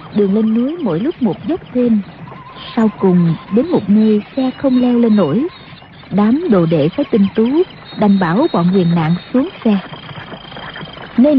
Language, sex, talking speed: Vietnamese, female, 170 wpm